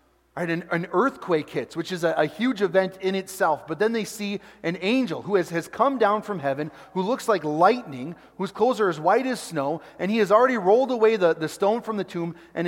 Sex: male